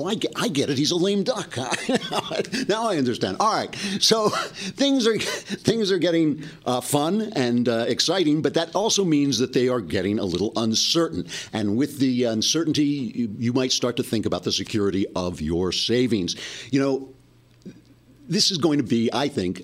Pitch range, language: 105-140 Hz, English